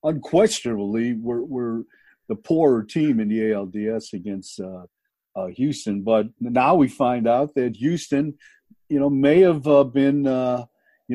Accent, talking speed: American, 150 wpm